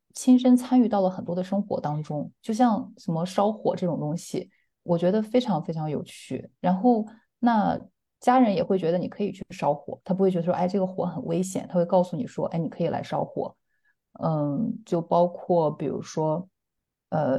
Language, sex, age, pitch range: Chinese, female, 30-49, 175-205 Hz